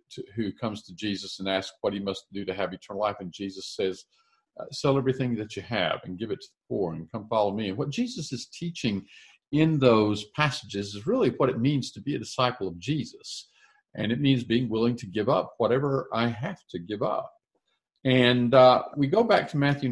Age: 50-69